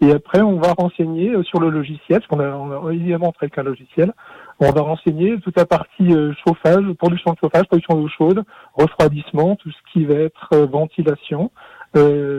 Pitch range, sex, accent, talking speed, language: 155-195 Hz, male, French, 190 wpm, French